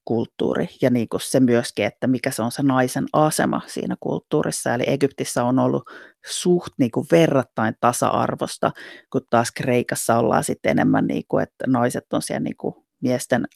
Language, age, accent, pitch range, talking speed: Finnish, 30-49, native, 125-175 Hz, 175 wpm